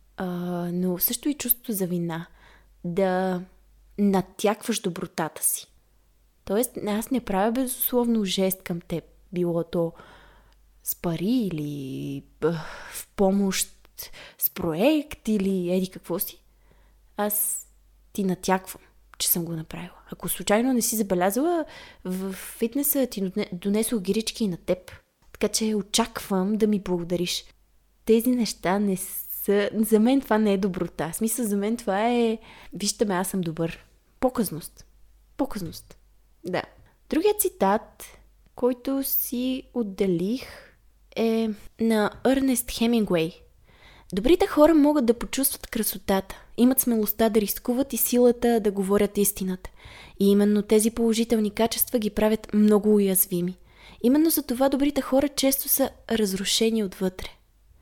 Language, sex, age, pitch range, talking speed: Bulgarian, female, 20-39, 185-235 Hz, 130 wpm